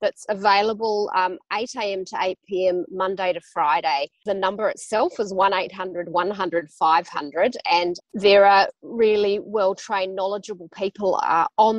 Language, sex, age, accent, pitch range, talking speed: English, female, 30-49, Australian, 185-215 Hz, 115 wpm